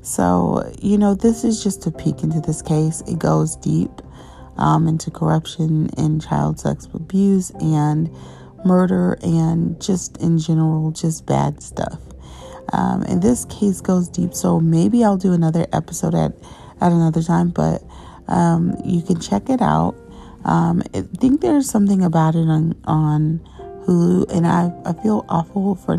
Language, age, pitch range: English, 30-49, 130-180 Hz